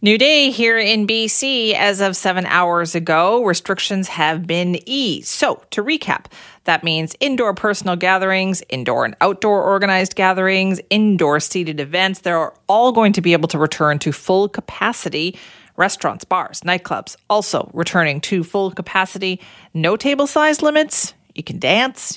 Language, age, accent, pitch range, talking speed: English, 40-59, American, 165-215 Hz, 150 wpm